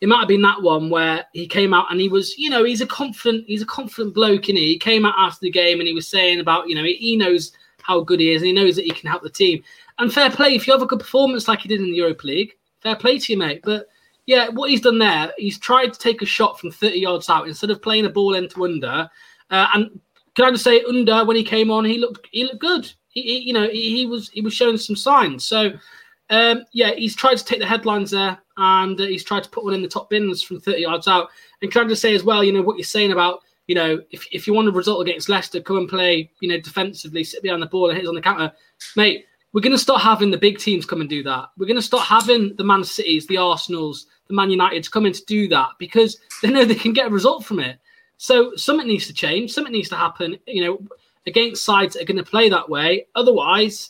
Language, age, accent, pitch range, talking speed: English, 20-39, British, 180-235 Hz, 280 wpm